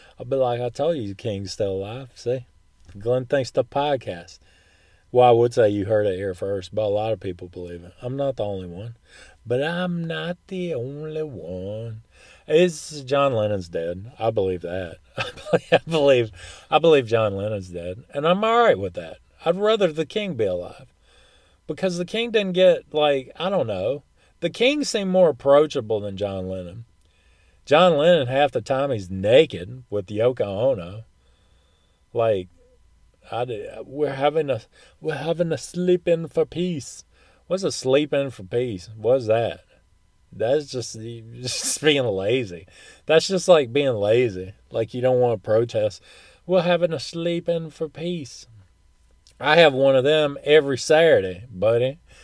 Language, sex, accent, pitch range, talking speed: English, male, American, 95-155 Hz, 170 wpm